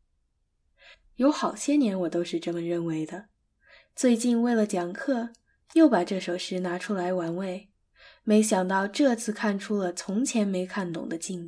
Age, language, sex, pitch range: 10-29, Chinese, female, 180-245 Hz